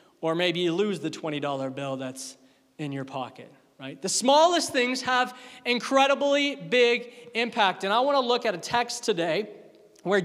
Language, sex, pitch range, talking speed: English, male, 165-210 Hz, 170 wpm